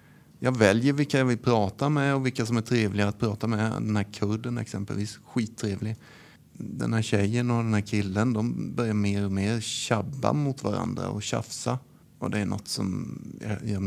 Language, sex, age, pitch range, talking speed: Swedish, male, 30-49, 105-130 Hz, 190 wpm